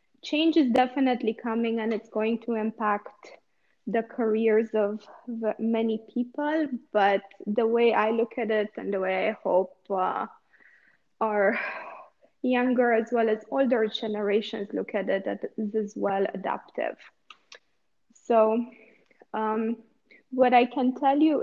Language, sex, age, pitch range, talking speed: English, female, 20-39, 210-240 Hz, 130 wpm